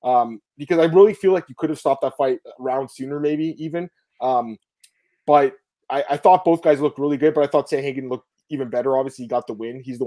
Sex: male